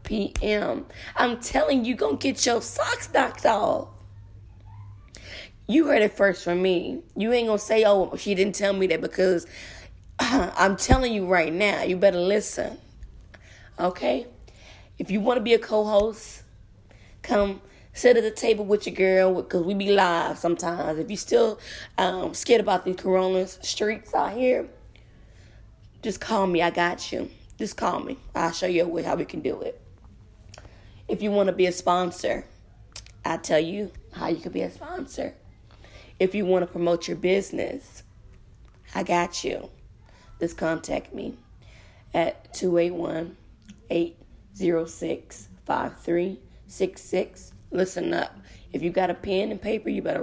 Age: 20-39